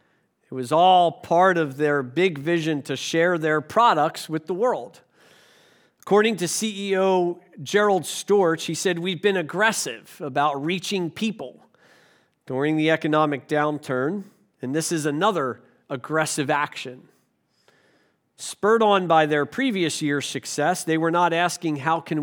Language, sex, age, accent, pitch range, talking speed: English, male, 40-59, American, 155-205 Hz, 135 wpm